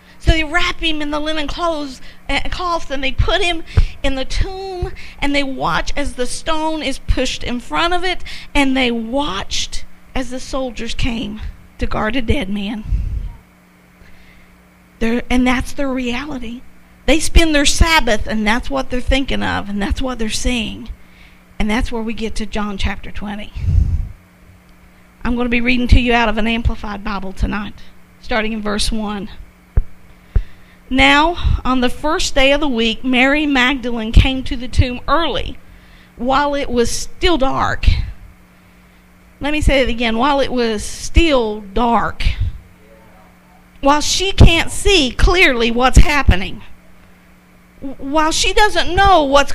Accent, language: American, English